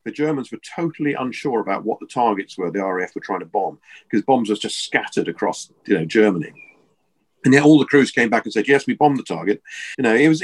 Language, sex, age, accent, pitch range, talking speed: English, male, 40-59, British, 90-150 Hz, 245 wpm